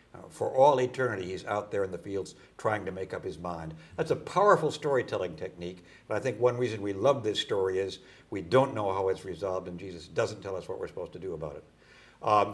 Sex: male